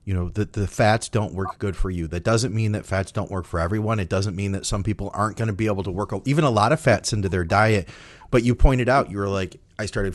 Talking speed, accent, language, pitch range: 290 wpm, American, English, 100-130 Hz